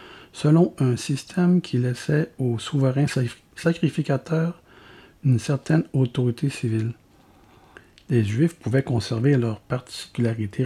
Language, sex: French, male